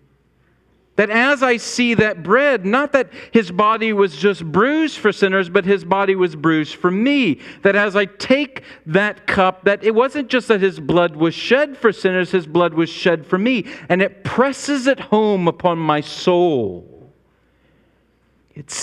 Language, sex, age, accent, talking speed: English, male, 50-69, American, 170 wpm